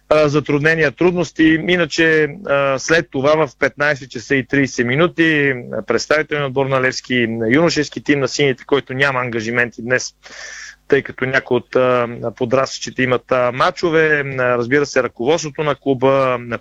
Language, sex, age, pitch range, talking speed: Bulgarian, male, 30-49, 125-145 Hz, 130 wpm